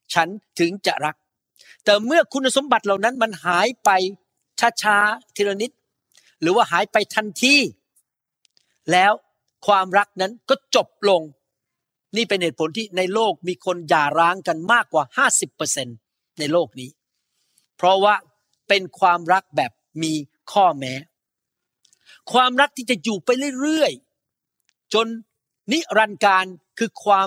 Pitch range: 165-225 Hz